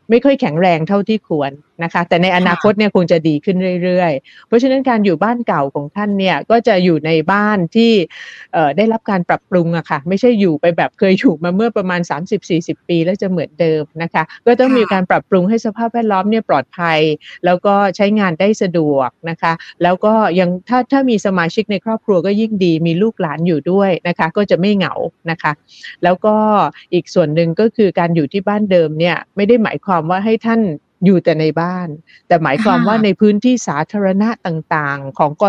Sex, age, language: female, 30-49, Thai